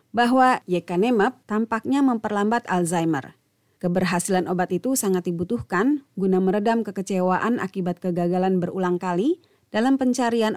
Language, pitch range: Indonesian, 175-230 Hz